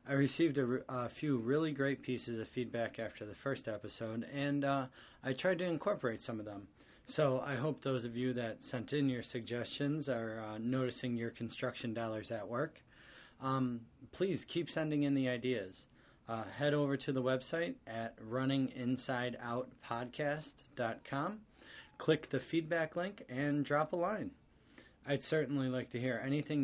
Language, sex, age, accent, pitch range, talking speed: English, male, 20-39, American, 115-140 Hz, 160 wpm